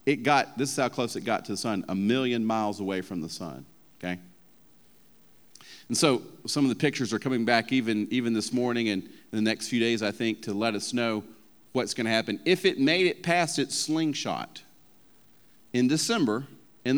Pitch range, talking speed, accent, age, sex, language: 105-140 Hz, 200 wpm, American, 40-59, male, English